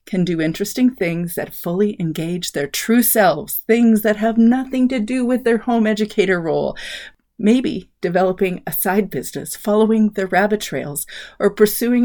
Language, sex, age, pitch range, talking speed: English, female, 40-59, 175-230 Hz, 160 wpm